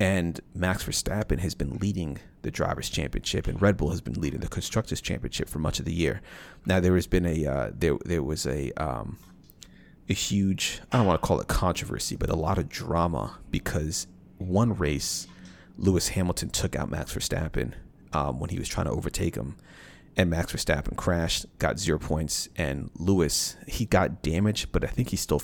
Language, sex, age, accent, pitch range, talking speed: English, male, 30-49, American, 80-95 Hz, 195 wpm